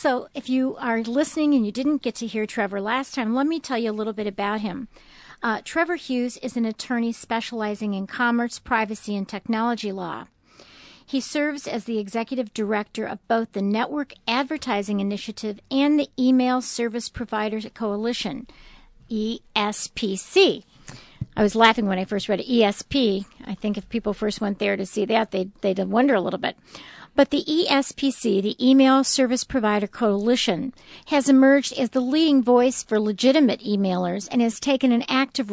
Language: English